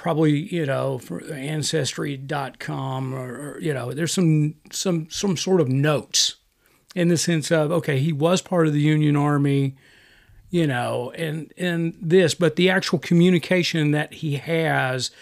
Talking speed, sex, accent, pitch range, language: 160 wpm, male, American, 145-180 Hz, English